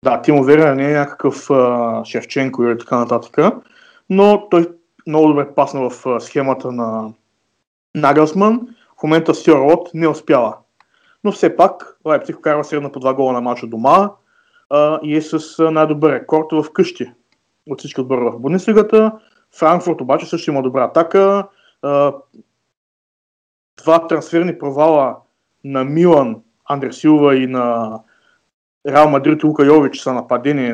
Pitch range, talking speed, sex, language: 130-160 Hz, 145 wpm, male, Bulgarian